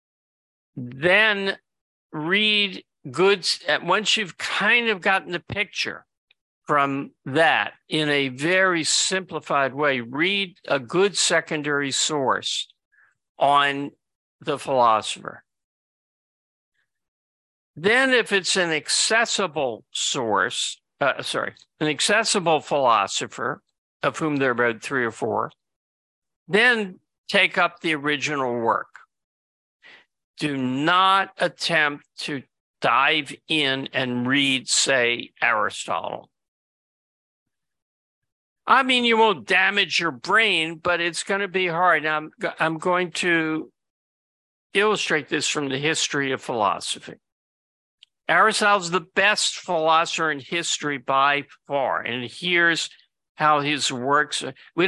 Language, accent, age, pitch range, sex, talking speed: English, American, 50-69, 140-190 Hz, male, 105 wpm